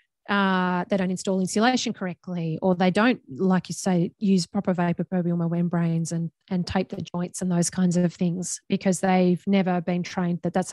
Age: 30-49